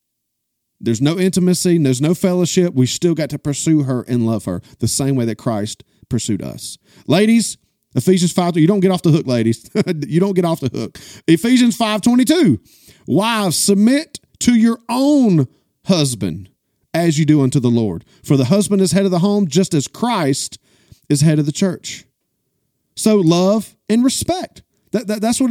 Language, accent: English, American